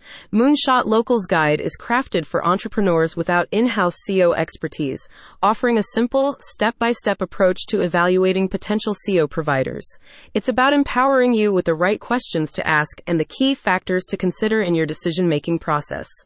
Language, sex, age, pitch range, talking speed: English, female, 30-49, 170-230 Hz, 150 wpm